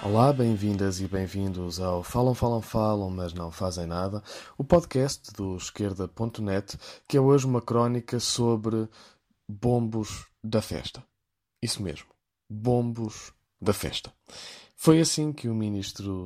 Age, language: 20-39, Portuguese